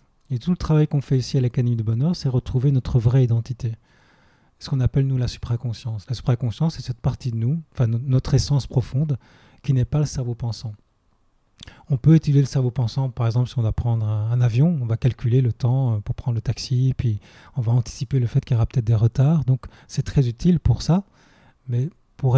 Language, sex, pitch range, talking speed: French, male, 115-135 Hz, 220 wpm